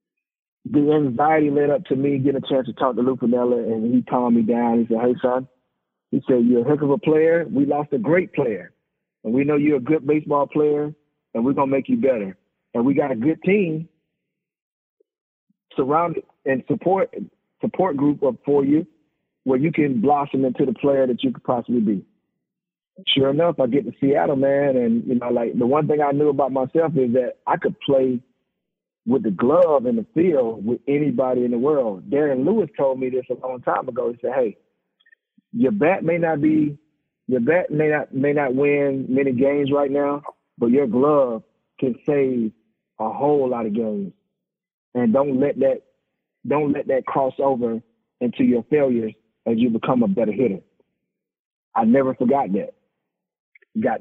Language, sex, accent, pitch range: English, male, American, 130-160 Hz